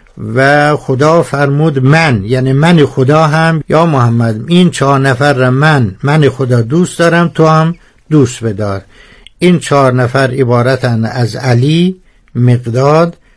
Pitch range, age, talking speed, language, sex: 120-155 Hz, 60-79, 135 wpm, Persian, male